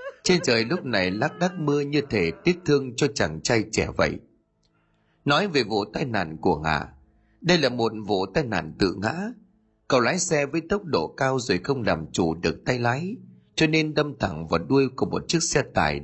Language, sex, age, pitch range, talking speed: Vietnamese, male, 30-49, 100-165 Hz, 210 wpm